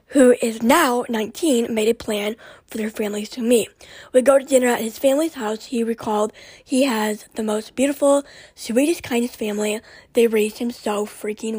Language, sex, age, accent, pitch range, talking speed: English, female, 10-29, American, 220-275 Hz, 180 wpm